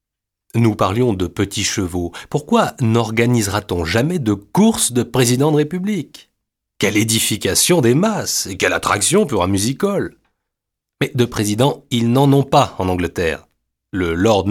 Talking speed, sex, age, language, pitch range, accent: 145 wpm, male, 30-49, French, 105-150 Hz, French